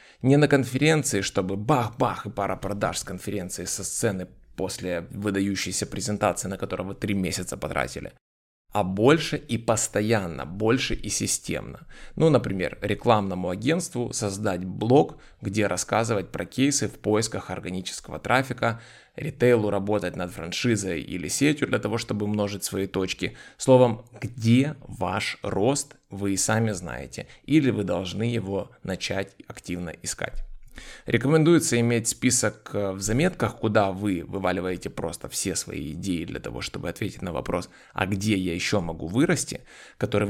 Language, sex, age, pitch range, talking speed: Ukrainian, male, 20-39, 95-120 Hz, 140 wpm